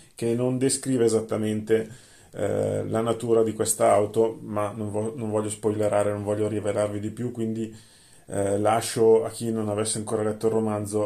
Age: 30-49